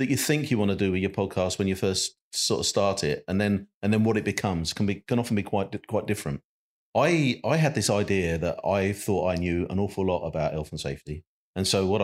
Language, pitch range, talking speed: English, 90-110 Hz, 265 wpm